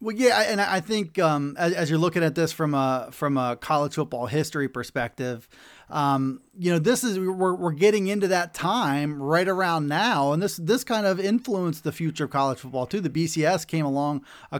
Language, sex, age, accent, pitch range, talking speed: English, male, 30-49, American, 150-195 Hz, 210 wpm